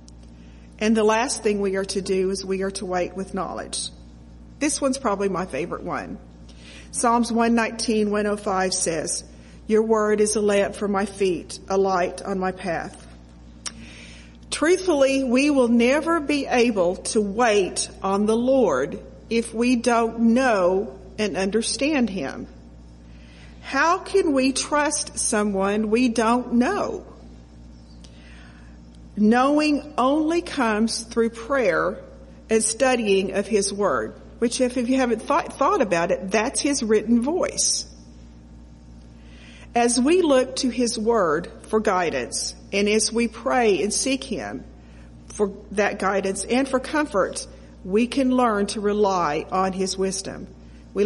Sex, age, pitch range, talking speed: female, 50-69, 165-235 Hz, 140 wpm